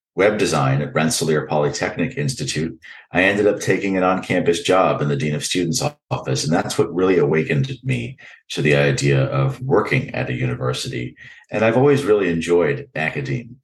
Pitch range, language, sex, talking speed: 75-95 Hz, English, male, 170 wpm